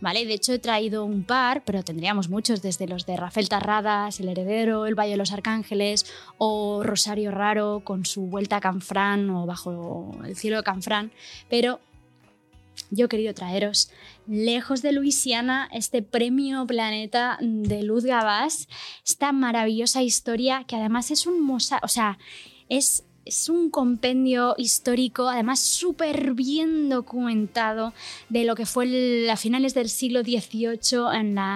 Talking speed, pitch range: 150 wpm, 205-250 Hz